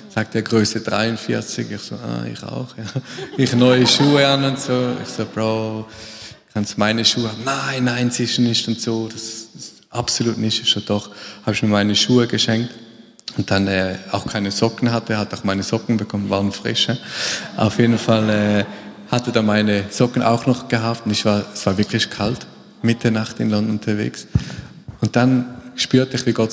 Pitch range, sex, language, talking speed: 100-120 Hz, male, German, 195 wpm